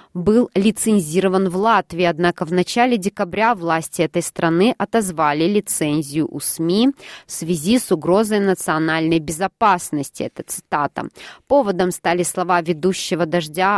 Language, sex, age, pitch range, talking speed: Russian, female, 20-39, 160-200 Hz, 120 wpm